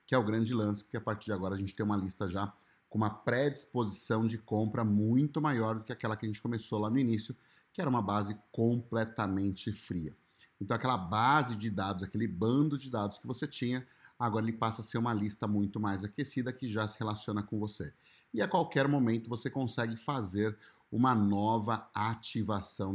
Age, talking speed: 30-49, 200 wpm